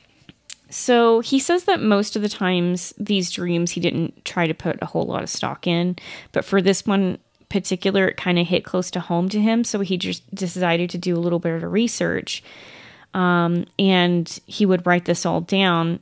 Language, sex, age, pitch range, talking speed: English, female, 20-39, 170-195 Hz, 200 wpm